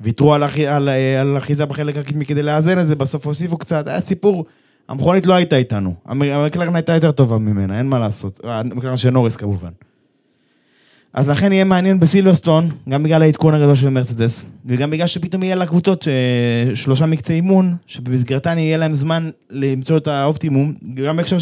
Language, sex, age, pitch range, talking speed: Hebrew, male, 20-39, 125-165 Hz, 170 wpm